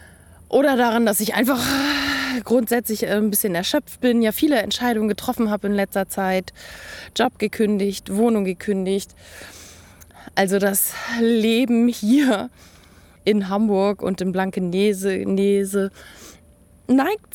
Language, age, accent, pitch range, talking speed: German, 20-39, German, 185-230 Hz, 115 wpm